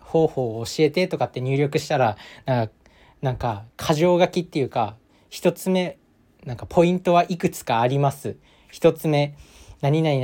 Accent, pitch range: native, 120-170 Hz